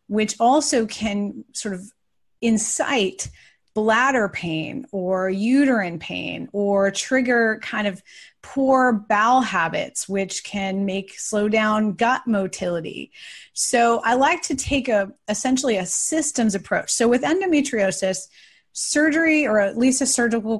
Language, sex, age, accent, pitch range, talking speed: English, female, 30-49, American, 190-230 Hz, 130 wpm